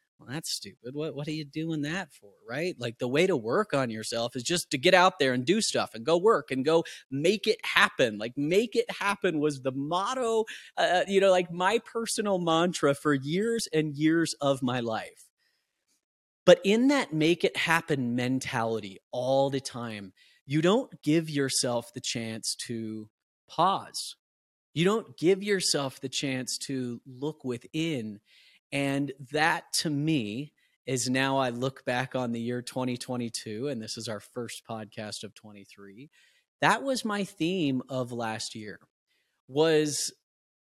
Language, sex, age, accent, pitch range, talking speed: English, male, 30-49, American, 120-165 Hz, 165 wpm